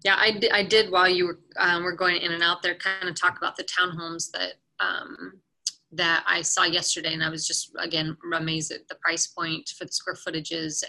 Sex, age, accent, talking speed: female, 20-39, American, 220 wpm